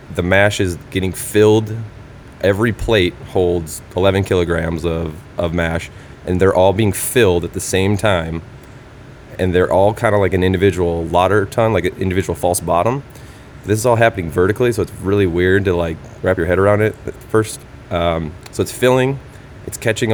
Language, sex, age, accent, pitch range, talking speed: English, male, 20-39, American, 85-105 Hz, 180 wpm